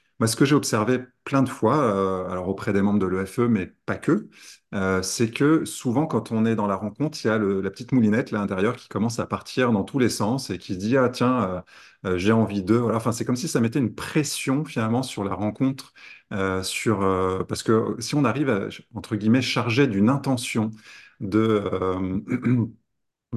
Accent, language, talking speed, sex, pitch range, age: French, French, 225 wpm, male, 105-130 Hz, 30-49